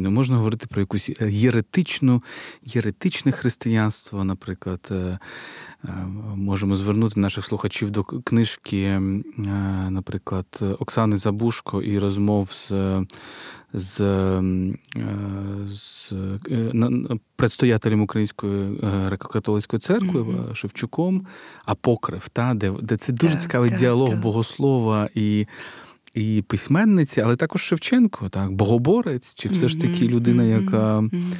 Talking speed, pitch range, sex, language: 90 wpm, 100-125 Hz, male, Ukrainian